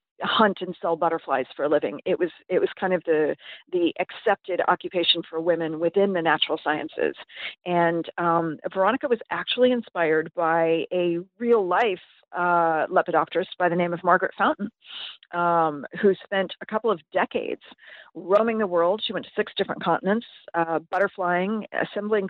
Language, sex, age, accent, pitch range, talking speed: English, female, 40-59, American, 170-210 Hz, 160 wpm